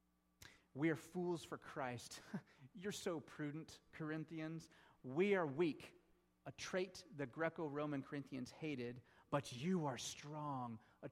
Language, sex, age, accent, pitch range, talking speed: English, male, 40-59, American, 150-210 Hz, 125 wpm